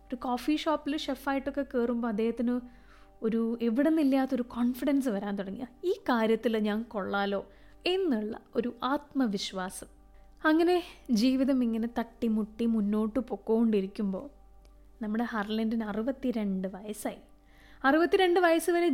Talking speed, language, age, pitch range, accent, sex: 55 wpm, English, 20-39, 215-265 Hz, Indian, female